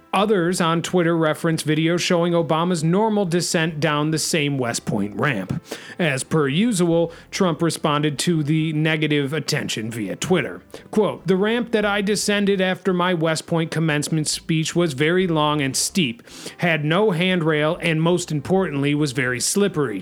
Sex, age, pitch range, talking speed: male, 40-59, 150-185 Hz, 155 wpm